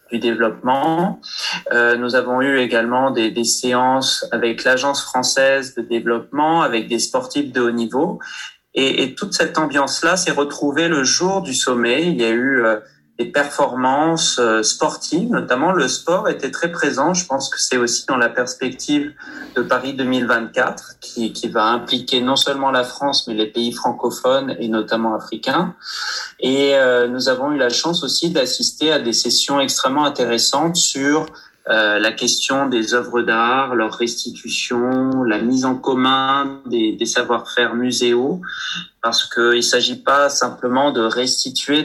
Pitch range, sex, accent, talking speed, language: 120-140 Hz, male, French, 160 wpm, French